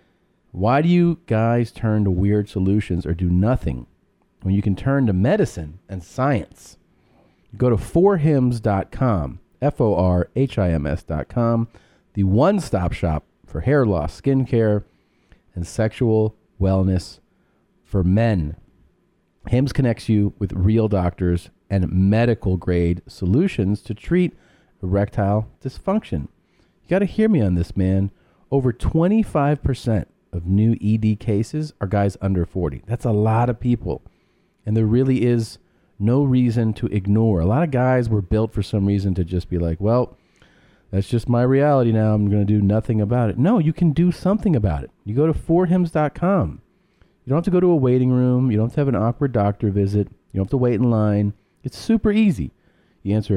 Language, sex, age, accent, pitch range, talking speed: English, male, 40-59, American, 95-130 Hz, 170 wpm